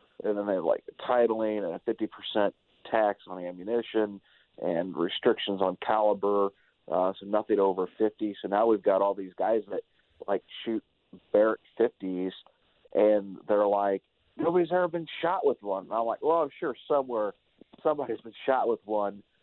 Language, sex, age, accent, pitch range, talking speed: English, male, 40-59, American, 95-115 Hz, 175 wpm